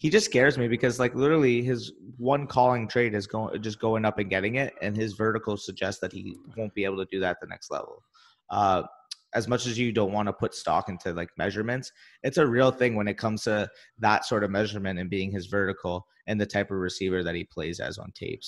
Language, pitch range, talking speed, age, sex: English, 100-125 Hz, 245 wpm, 20-39, male